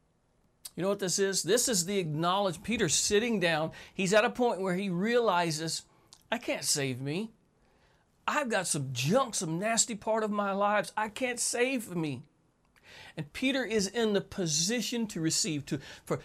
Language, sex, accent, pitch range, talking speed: English, male, American, 160-225 Hz, 175 wpm